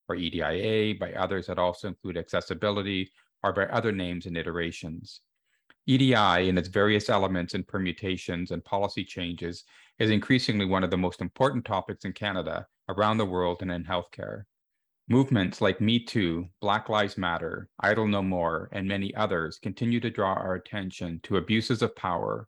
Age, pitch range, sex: 40-59, 90-110 Hz, male